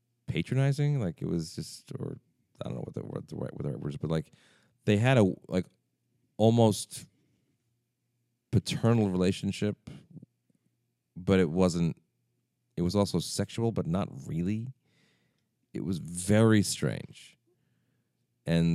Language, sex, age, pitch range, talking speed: English, male, 40-59, 85-120 Hz, 120 wpm